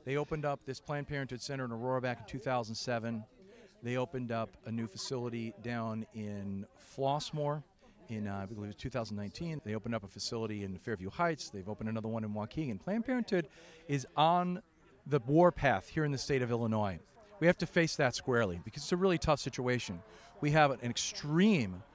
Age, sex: 40-59, male